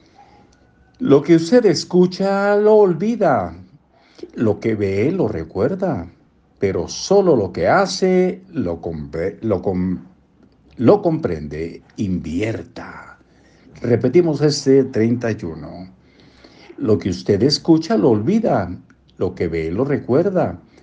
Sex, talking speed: male, 100 wpm